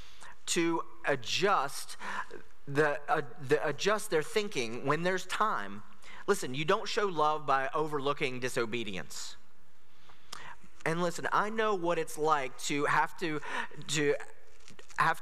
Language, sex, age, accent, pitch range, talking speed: English, male, 30-49, American, 145-195 Hz, 110 wpm